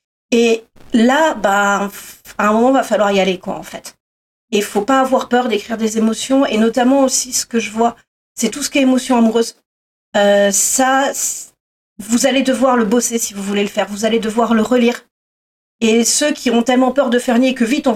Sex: female